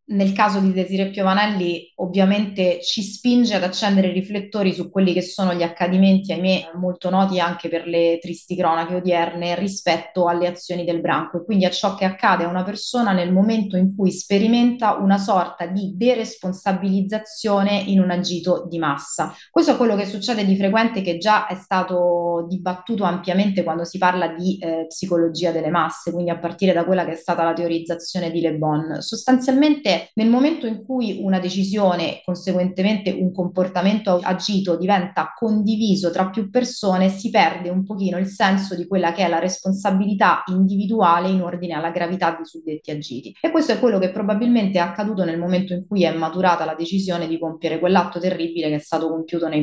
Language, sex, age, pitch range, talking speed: Italian, female, 20-39, 170-200 Hz, 180 wpm